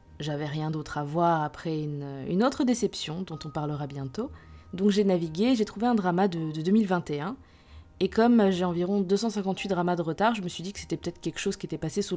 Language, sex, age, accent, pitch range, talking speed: French, female, 20-39, French, 150-195 Hz, 225 wpm